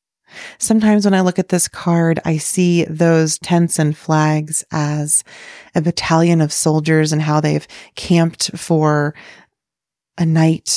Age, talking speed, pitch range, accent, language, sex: 20-39, 140 wpm, 155-195 Hz, American, English, female